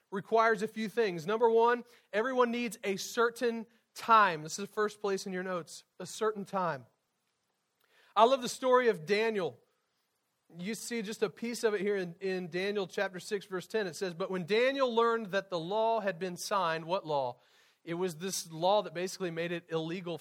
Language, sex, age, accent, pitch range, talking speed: English, male, 40-59, American, 170-220 Hz, 195 wpm